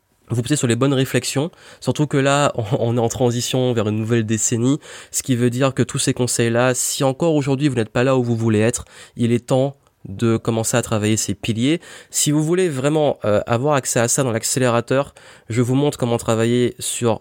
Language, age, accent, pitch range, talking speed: French, 20-39, French, 110-135 Hz, 215 wpm